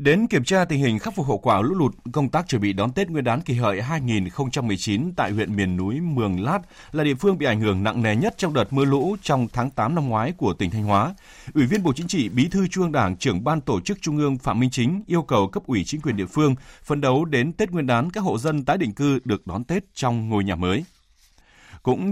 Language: Vietnamese